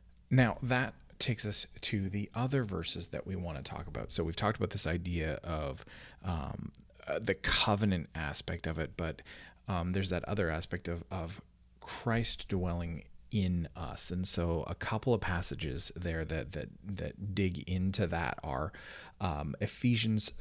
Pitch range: 85-110 Hz